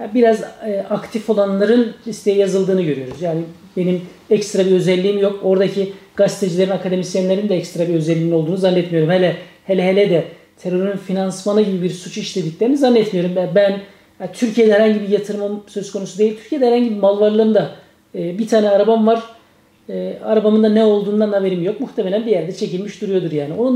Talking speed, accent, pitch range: 155 wpm, native, 195-225 Hz